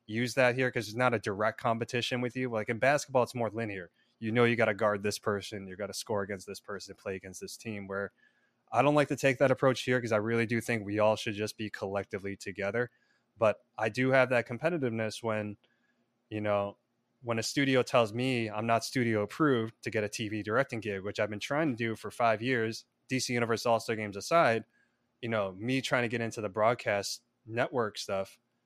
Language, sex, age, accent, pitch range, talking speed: English, male, 20-39, American, 110-130 Hz, 220 wpm